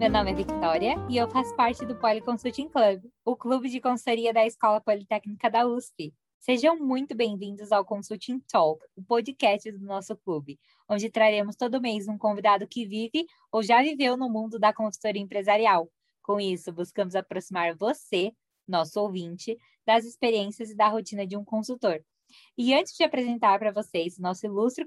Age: 20-39